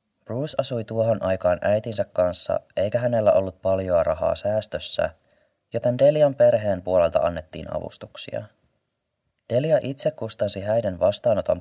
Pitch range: 95-125 Hz